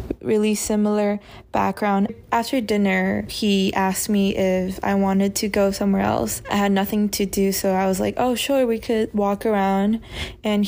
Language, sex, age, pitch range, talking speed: English, female, 20-39, 195-215 Hz, 175 wpm